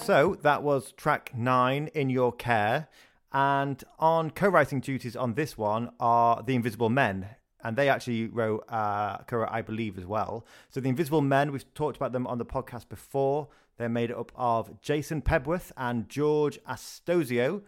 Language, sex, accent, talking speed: English, male, British, 170 wpm